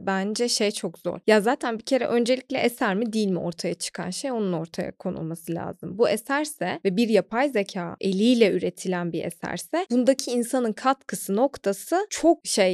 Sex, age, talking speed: female, 20-39, 170 wpm